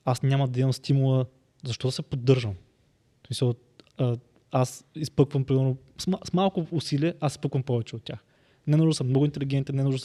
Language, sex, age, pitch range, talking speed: Bulgarian, male, 20-39, 125-150 Hz, 185 wpm